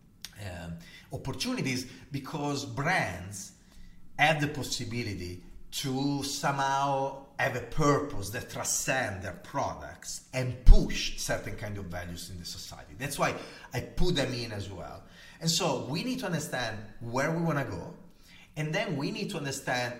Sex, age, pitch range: male, 40-59, 110-160 Hz